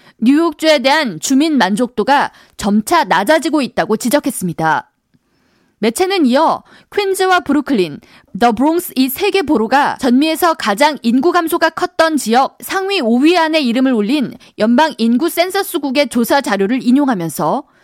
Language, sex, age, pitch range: Korean, female, 20-39, 235-330 Hz